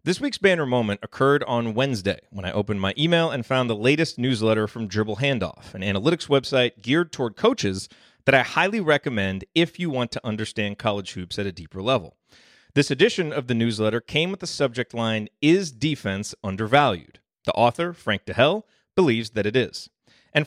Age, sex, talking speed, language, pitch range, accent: 30-49, male, 185 wpm, English, 110-150 Hz, American